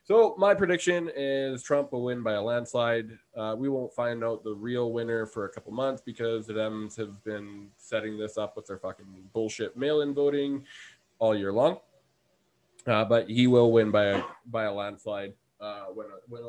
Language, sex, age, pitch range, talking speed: English, male, 20-39, 100-115 Hz, 190 wpm